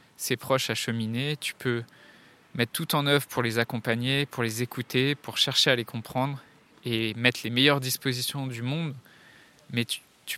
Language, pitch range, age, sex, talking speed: French, 115-135 Hz, 20-39, male, 175 wpm